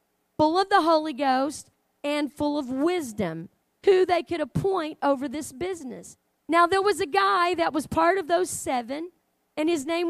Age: 40-59